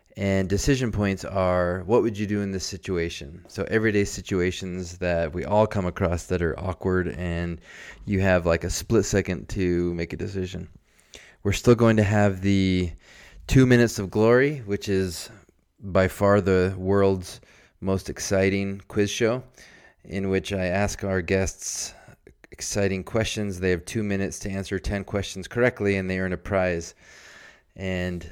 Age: 30-49